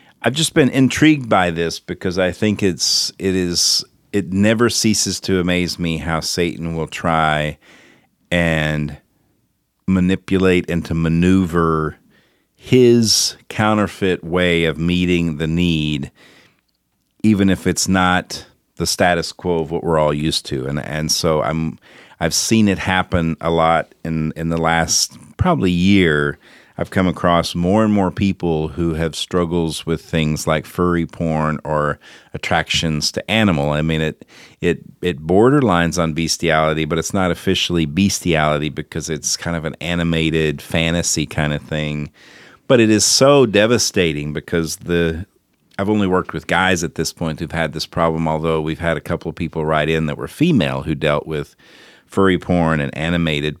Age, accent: 40-59, American